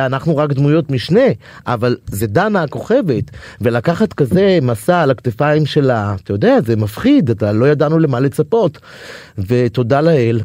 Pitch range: 120-155 Hz